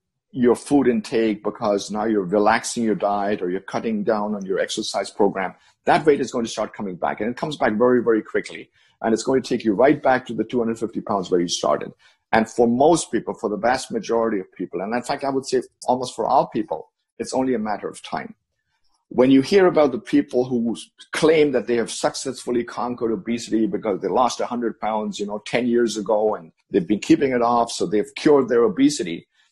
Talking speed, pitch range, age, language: 220 wpm, 110-135 Hz, 50-69, English